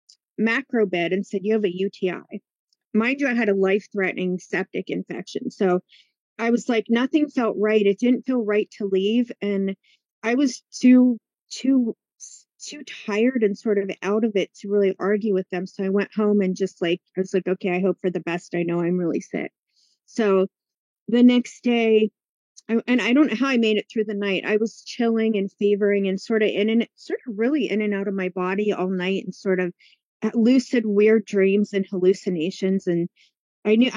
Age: 30-49